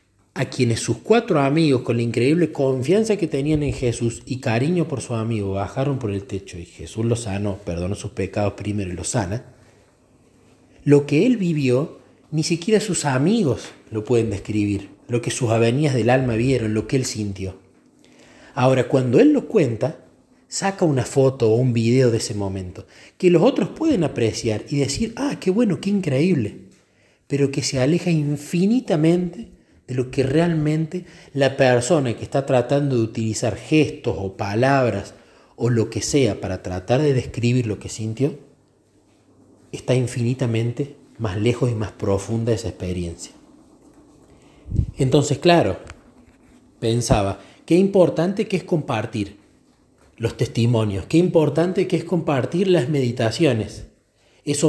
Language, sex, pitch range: Spanish, male, 110-150 Hz